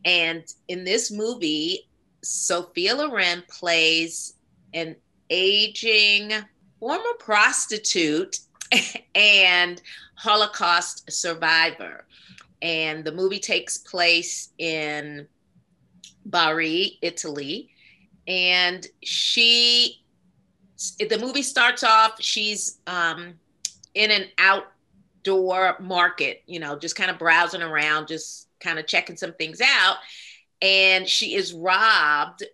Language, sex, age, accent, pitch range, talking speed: English, female, 40-59, American, 165-210 Hz, 95 wpm